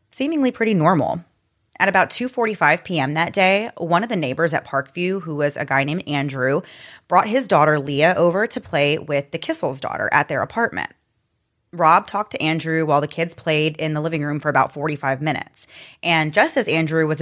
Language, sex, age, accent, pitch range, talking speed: English, female, 20-39, American, 150-195 Hz, 195 wpm